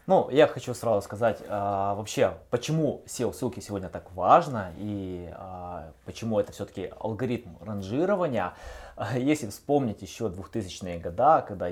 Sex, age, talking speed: male, 20-39, 125 wpm